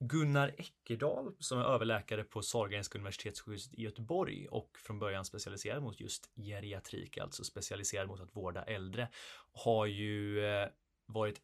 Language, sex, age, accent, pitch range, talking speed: Swedish, male, 20-39, native, 100-120 Hz, 135 wpm